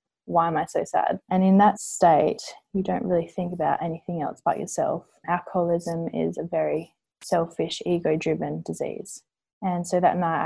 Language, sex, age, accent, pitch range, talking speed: English, female, 20-39, Australian, 170-195 Hz, 165 wpm